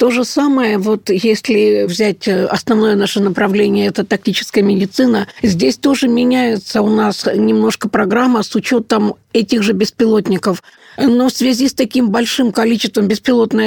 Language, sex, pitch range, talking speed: Russian, female, 210-240 Hz, 140 wpm